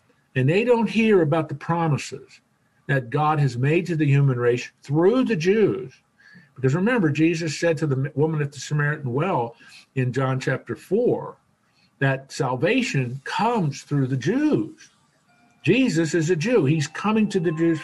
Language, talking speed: English, 160 wpm